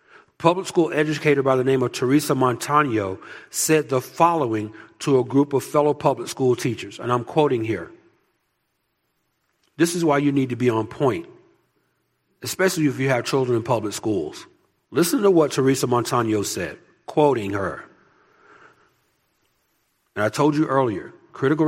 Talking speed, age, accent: 150 wpm, 50-69, American